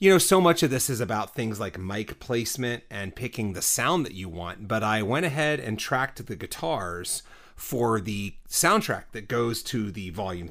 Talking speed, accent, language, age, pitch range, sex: 200 wpm, American, English, 30-49, 105-130 Hz, male